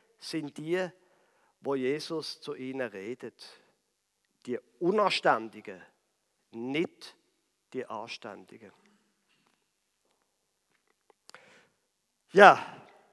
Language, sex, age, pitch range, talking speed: German, male, 50-69, 160-220 Hz, 60 wpm